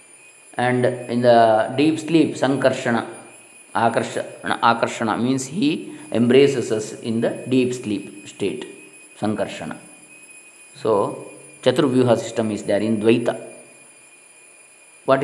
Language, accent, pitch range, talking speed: English, Indian, 120-160 Hz, 100 wpm